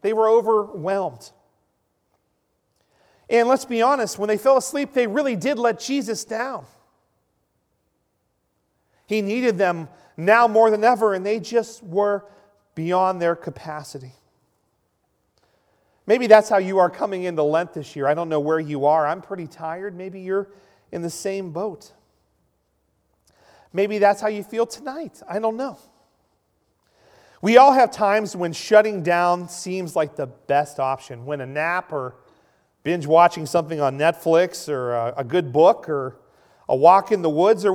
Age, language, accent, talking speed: 40-59, English, American, 155 wpm